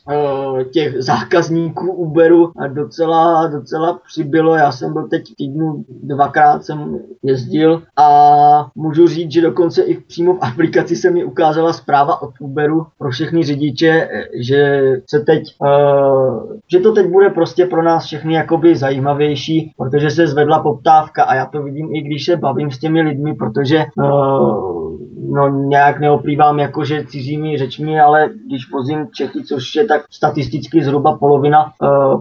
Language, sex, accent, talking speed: Czech, male, native, 150 wpm